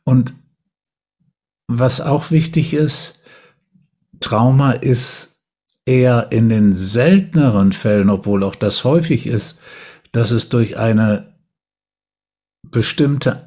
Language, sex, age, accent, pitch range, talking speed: German, male, 60-79, German, 110-145 Hz, 100 wpm